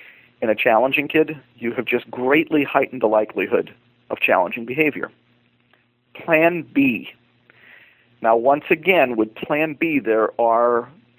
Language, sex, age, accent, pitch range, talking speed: English, male, 40-59, American, 120-155 Hz, 130 wpm